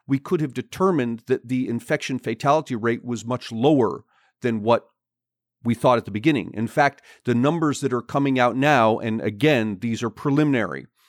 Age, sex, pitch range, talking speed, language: 40-59, male, 115-155 Hz, 180 wpm, Danish